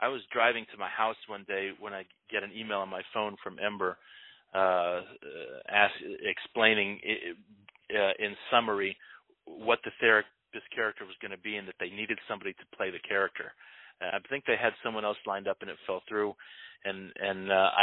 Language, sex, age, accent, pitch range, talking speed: English, male, 40-59, American, 100-115 Hz, 200 wpm